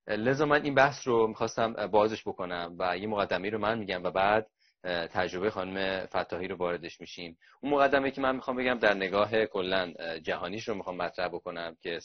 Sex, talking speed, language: male, 185 wpm, Persian